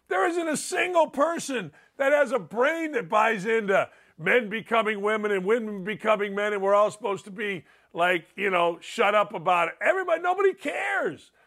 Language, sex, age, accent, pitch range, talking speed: English, male, 50-69, American, 195-325 Hz, 185 wpm